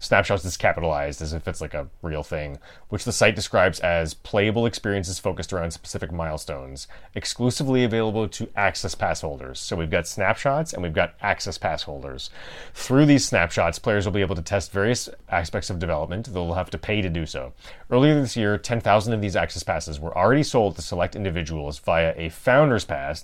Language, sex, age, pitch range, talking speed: English, male, 30-49, 80-105 Hz, 195 wpm